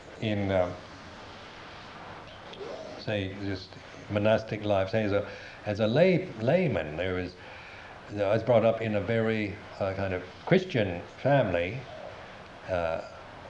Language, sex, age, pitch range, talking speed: English, male, 60-79, 100-125 Hz, 140 wpm